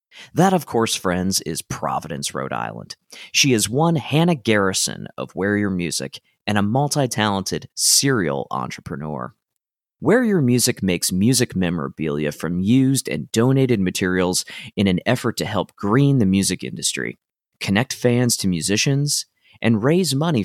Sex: male